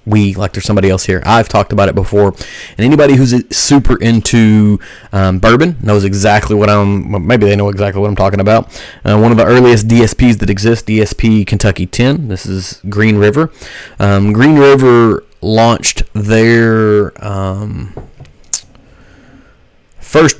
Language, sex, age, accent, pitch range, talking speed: English, male, 30-49, American, 100-115 Hz, 150 wpm